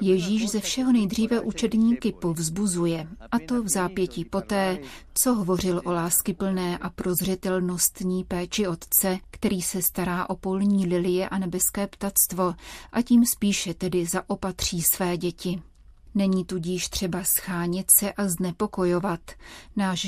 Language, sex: Czech, female